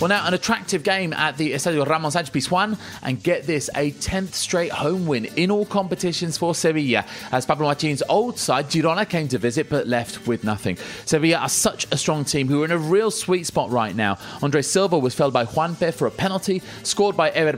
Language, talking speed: English, 220 wpm